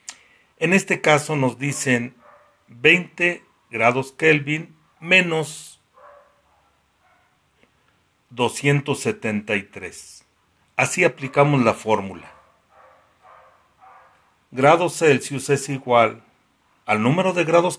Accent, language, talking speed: Mexican, Spanish, 75 wpm